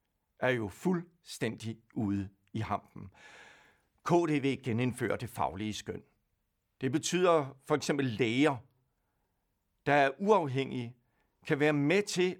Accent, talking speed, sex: native, 110 wpm, male